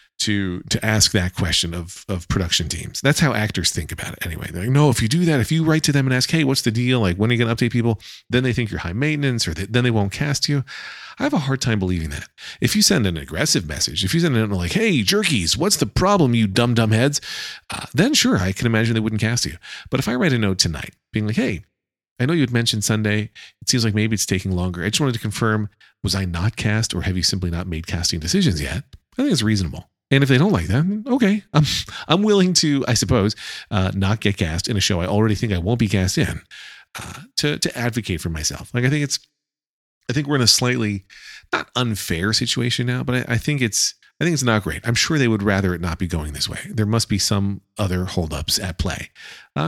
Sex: male